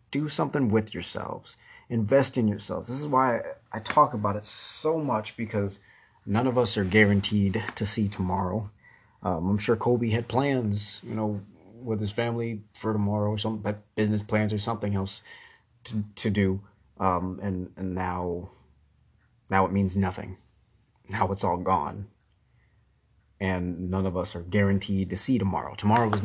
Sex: male